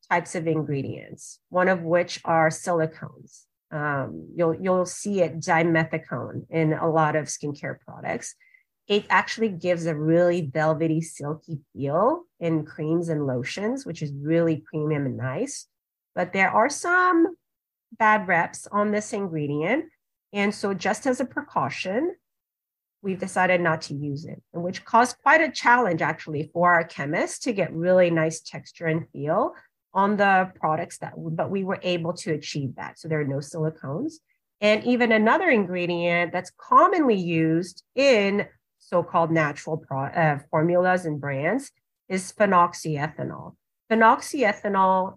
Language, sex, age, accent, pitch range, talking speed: English, female, 30-49, American, 160-215 Hz, 145 wpm